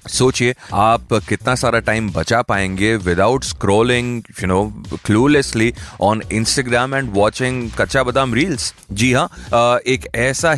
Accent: native